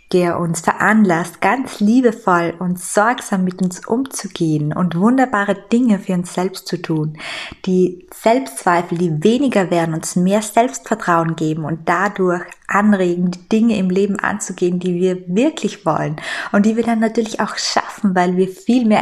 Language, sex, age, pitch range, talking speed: German, female, 20-39, 175-210 Hz, 160 wpm